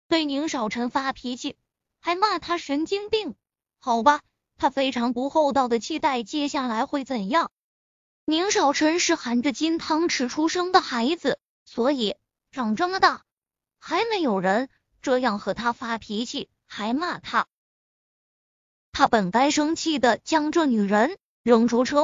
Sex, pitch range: female, 245-335 Hz